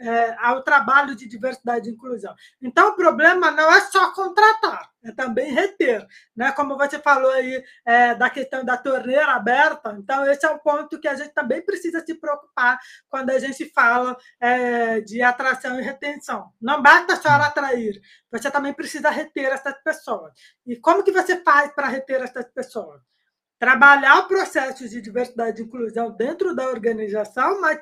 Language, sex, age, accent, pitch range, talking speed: Portuguese, female, 20-39, Brazilian, 235-305 Hz, 160 wpm